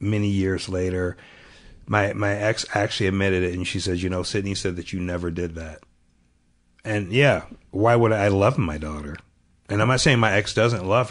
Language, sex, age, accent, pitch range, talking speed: English, male, 40-59, American, 85-100 Hz, 200 wpm